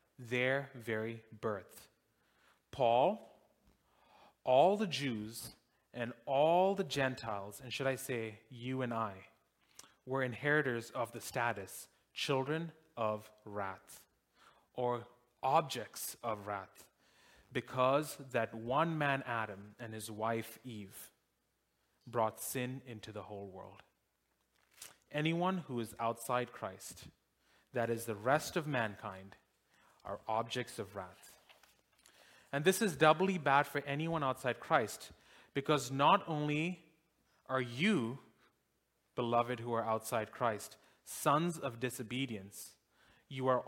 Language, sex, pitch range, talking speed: English, male, 110-140 Hz, 115 wpm